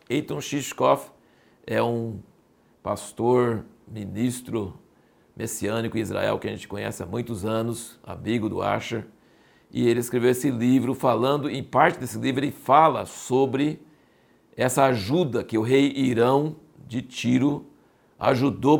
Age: 60-79